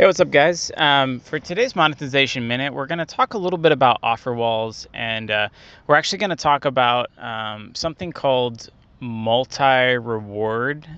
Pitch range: 115-140 Hz